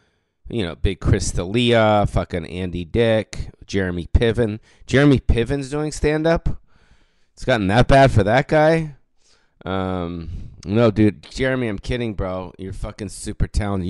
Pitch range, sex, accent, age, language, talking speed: 95-115 Hz, male, American, 30-49, English, 140 wpm